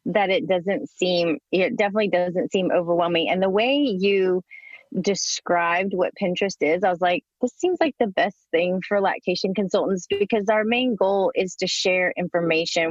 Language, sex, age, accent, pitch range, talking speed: English, female, 30-49, American, 170-205 Hz, 170 wpm